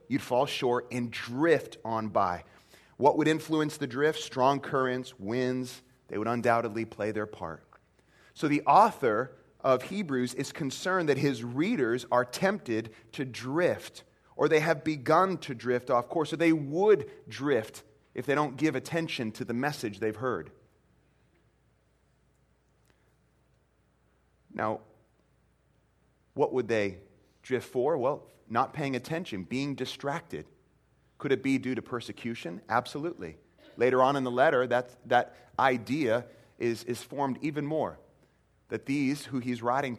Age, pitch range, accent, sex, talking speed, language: 30-49, 115-150 Hz, American, male, 145 wpm, English